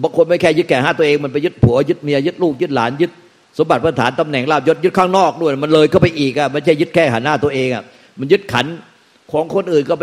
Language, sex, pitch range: Thai, male, 125-160 Hz